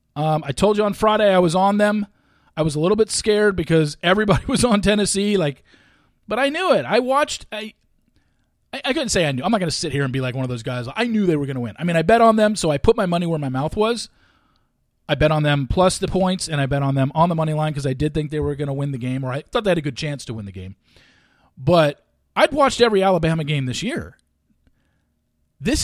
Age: 40-59